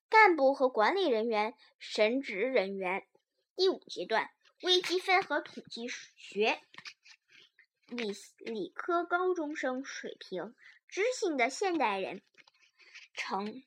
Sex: male